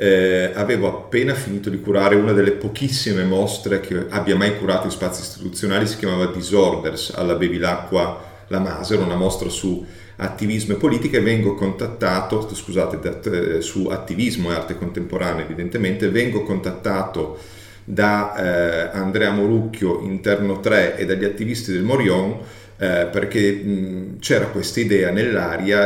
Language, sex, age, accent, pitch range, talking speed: English, male, 40-59, Italian, 95-105 Hz, 135 wpm